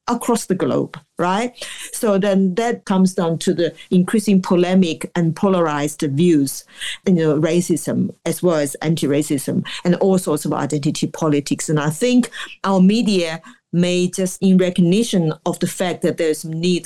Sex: female